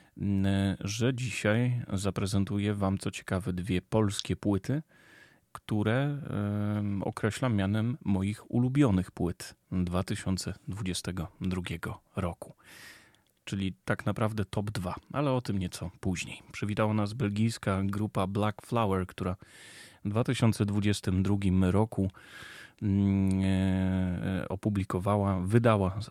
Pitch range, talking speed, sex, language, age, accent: 95-110 Hz, 90 wpm, male, Polish, 30-49, native